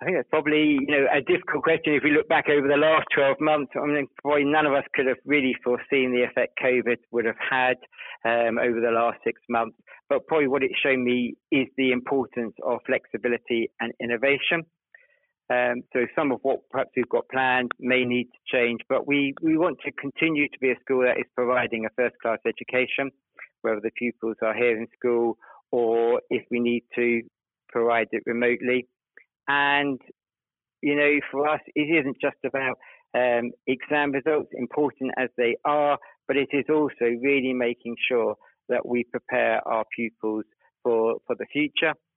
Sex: male